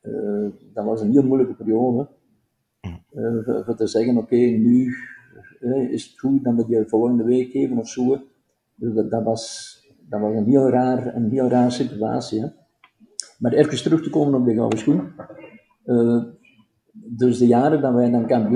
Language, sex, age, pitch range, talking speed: Dutch, male, 50-69, 115-140 Hz, 190 wpm